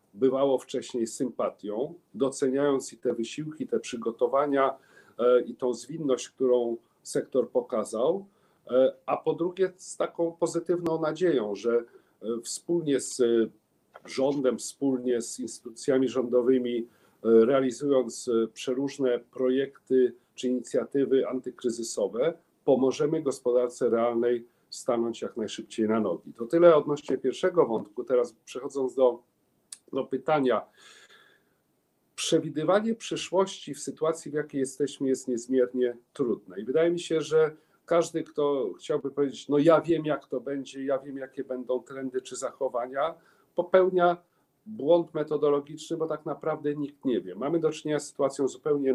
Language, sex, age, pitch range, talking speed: Polish, male, 40-59, 125-160 Hz, 125 wpm